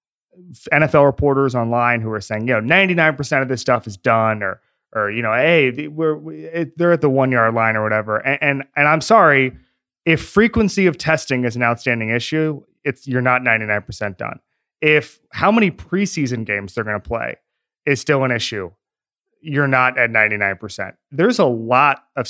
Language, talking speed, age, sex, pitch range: English, 180 wpm, 30-49, male, 110-145 Hz